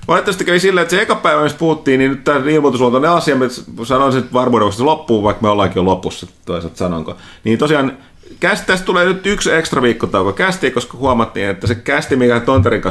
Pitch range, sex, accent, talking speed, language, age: 95-130 Hz, male, native, 185 wpm, Finnish, 30-49